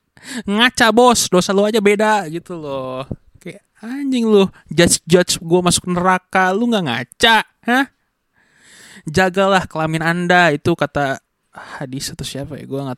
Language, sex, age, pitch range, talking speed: Indonesian, male, 20-39, 130-180 Hz, 145 wpm